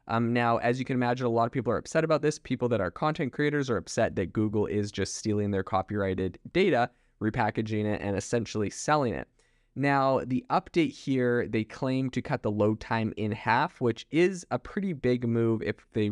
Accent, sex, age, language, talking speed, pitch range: American, male, 20-39, English, 210 wpm, 105-125 Hz